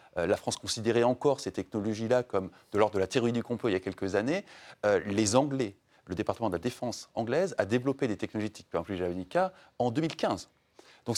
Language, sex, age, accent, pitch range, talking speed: French, male, 30-49, French, 110-145 Hz, 200 wpm